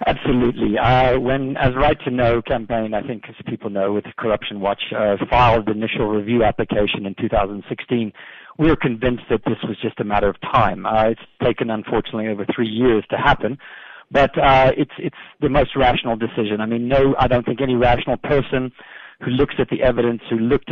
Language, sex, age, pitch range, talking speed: English, male, 50-69, 110-125 Hz, 210 wpm